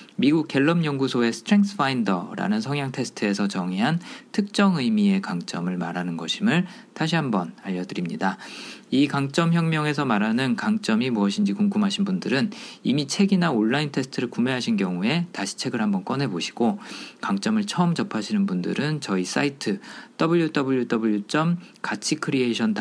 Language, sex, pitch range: Korean, male, 130-205 Hz